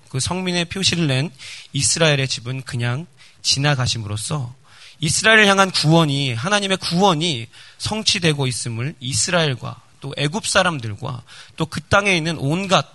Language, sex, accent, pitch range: Korean, male, native, 120-170 Hz